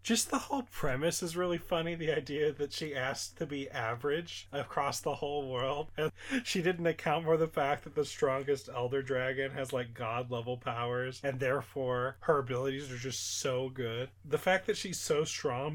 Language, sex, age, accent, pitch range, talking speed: English, male, 30-49, American, 125-160 Hz, 190 wpm